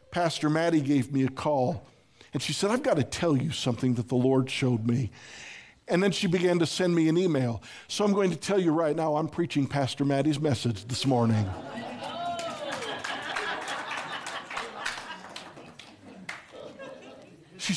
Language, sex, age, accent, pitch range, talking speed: English, male, 50-69, American, 125-190 Hz, 150 wpm